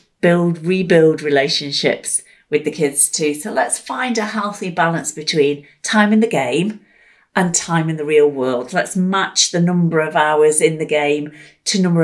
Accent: British